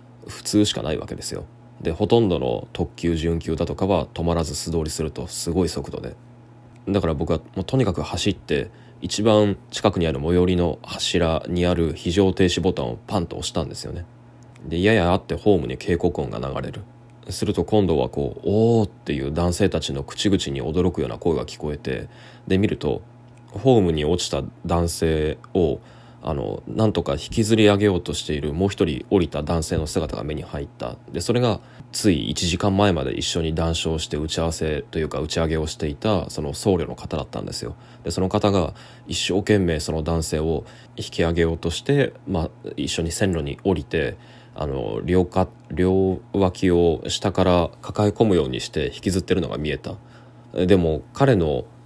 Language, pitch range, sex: Japanese, 80-105 Hz, male